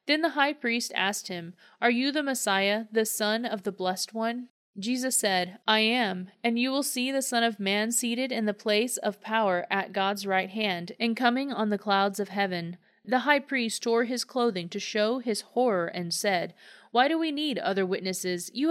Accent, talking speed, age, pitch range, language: American, 205 wpm, 30-49, 190-245 Hz, English